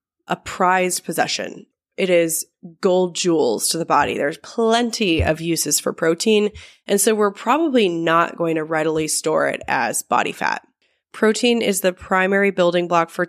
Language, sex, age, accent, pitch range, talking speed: English, female, 20-39, American, 165-200 Hz, 165 wpm